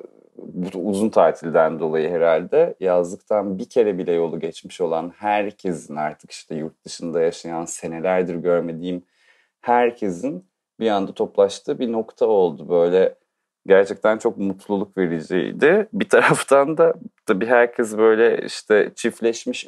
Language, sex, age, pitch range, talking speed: Turkish, male, 30-49, 90-115 Hz, 120 wpm